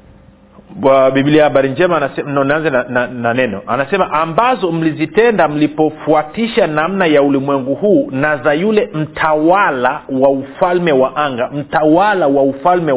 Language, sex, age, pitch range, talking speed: Swahili, male, 40-59, 140-180 Hz, 120 wpm